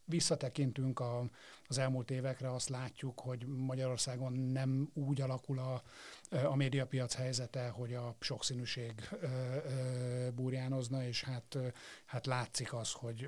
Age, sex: 50-69, male